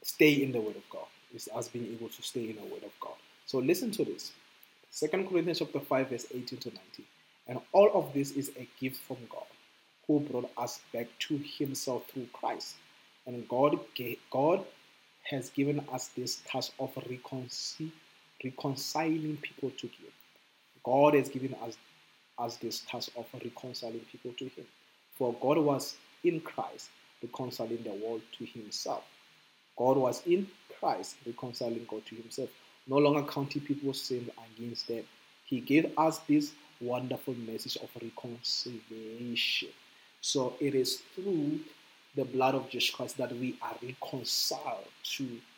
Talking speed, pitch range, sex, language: 155 wpm, 120-145 Hz, male, English